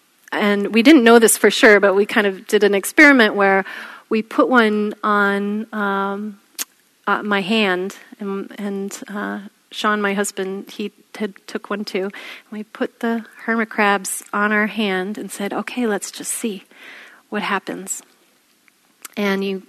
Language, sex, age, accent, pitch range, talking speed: English, female, 30-49, American, 195-230 Hz, 160 wpm